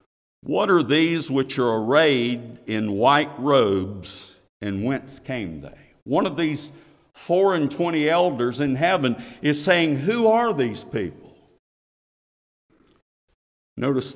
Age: 50-69